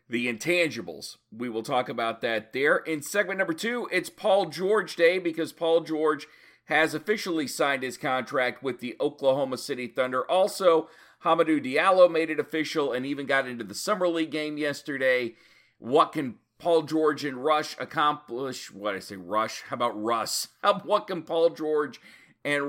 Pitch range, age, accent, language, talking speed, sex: 125-165 Hz, 40-59, American, English, 170 wpm, male